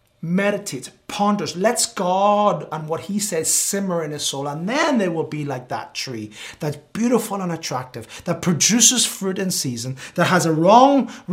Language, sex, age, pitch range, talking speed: English, male, 30-49, 130-180 Hz, 175 wpm